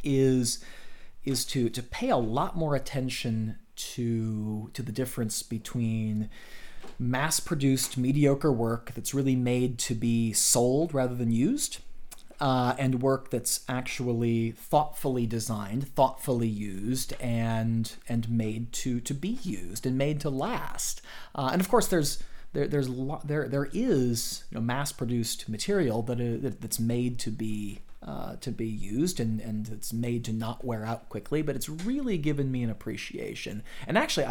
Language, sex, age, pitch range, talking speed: English, male, 30-49, 115-140 Hz, 155 wpm